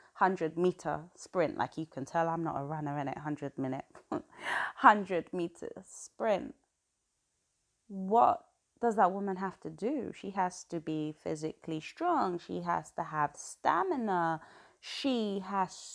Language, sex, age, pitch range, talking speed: English, female, 20-39, 165-210 Hz, 130 wpm